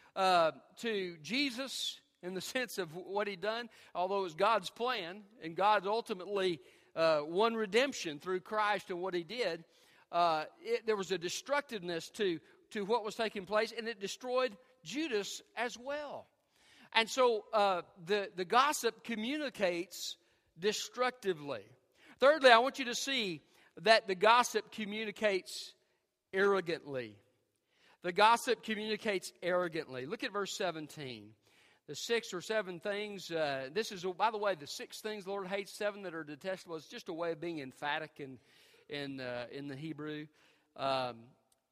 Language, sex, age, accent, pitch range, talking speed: English, male, 50-69, American, 170-230 Hz, 150 wpm